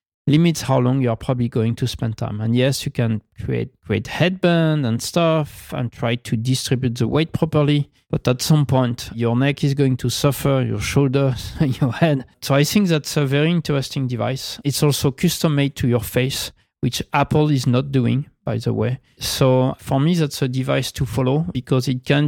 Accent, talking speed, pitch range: French, 200 wpm, 120-145 Hz